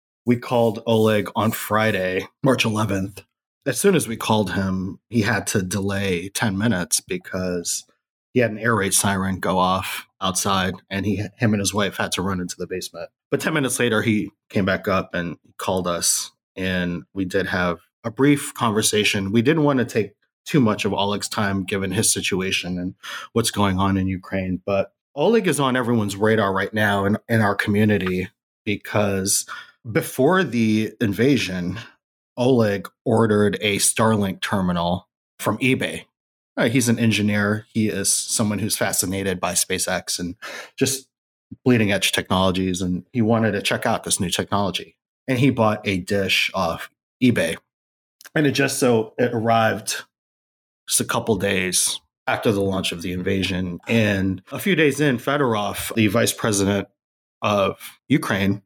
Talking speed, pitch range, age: 160 wpm, 95-115 Hz, 30-49